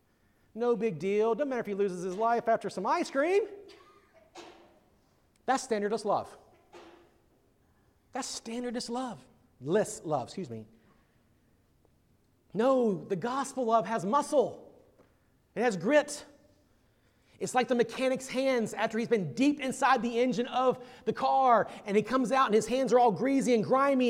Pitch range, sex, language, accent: 195-260 Hz, male, English, American